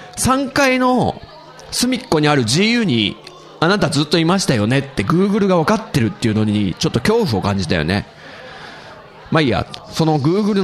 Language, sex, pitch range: Japanese, male, 130-210 Hz